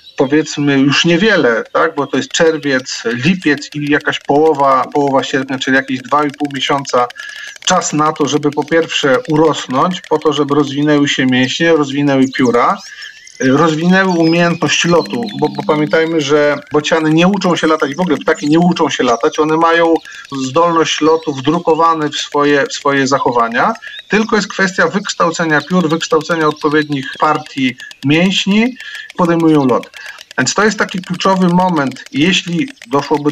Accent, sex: native, male